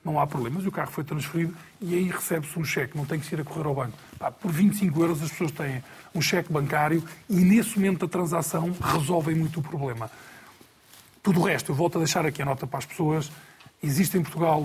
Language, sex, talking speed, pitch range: Portuguese, male, 225 wpm, 145-175 Hz